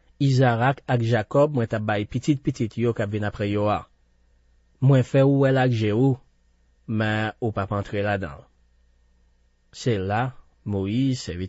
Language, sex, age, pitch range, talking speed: French, male, 30-49, 95-130 Hz, 155 wpm